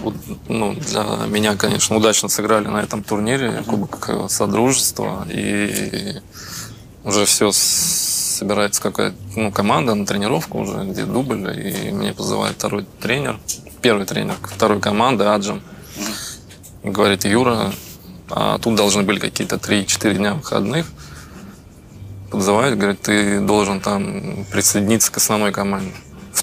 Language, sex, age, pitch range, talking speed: Russian, male, 20-39, 100-110 Hz, 120 wpm